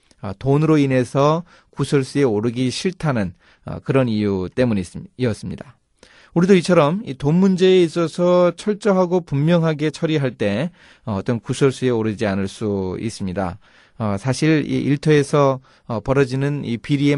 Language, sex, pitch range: Korean, male, 110-160 Hz